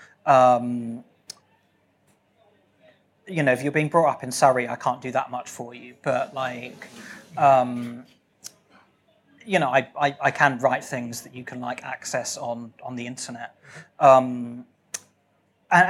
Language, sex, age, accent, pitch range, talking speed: English, male, 30-49, British, 125-150 Hz, 145 wpm